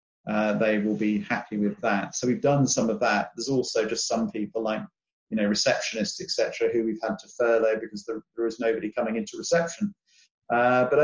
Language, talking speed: English, 205 wpm